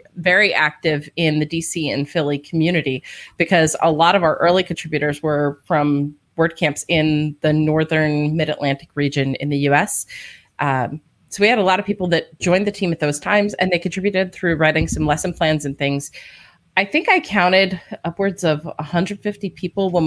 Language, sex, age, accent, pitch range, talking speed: English, female, 30-49, American, 155-190 Hz, 180 wpm